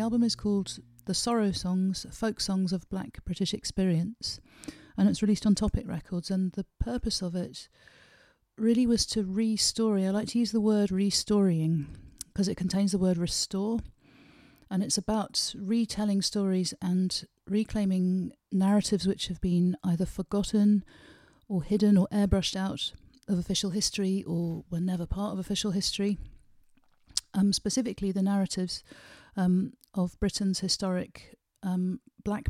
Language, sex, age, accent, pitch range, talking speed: English, female, 40-59, British, 175-205 Hz, 145 wpm